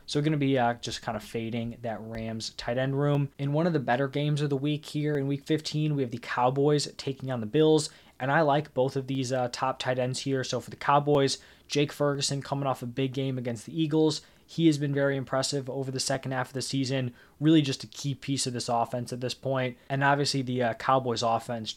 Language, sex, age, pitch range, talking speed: English, male, 20-39, 125-145 Hz, 245 wpm